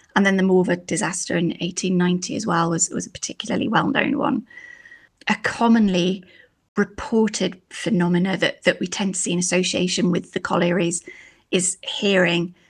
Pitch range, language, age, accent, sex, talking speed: 180-215 Hz, English, 20-39, British, female, 150 wpm